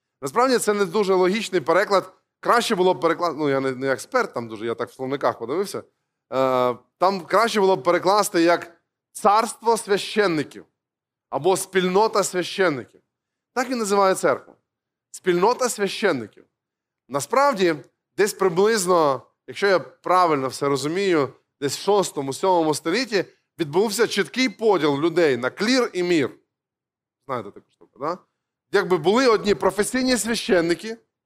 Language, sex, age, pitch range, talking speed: Ukrainian, male, 20-39, 165-220 Hz, 130 wpm